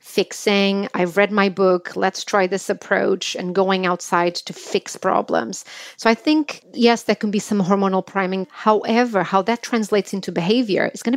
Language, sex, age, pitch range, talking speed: English, female, 30-49, 185-215 Hz, 175 wpm